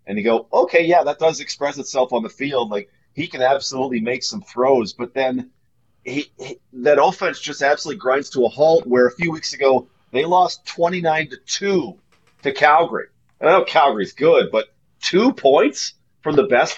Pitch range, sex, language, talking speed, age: 120-150 Hz, male, English, 195 wpm, 40-59